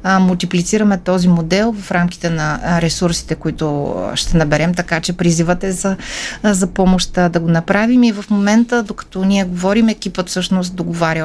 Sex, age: female, 30-49